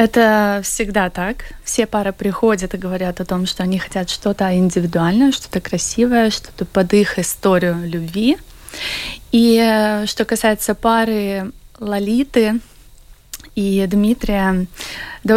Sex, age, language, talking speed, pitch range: female, 20-39, Russian, 115 wpm, 195-230 Hz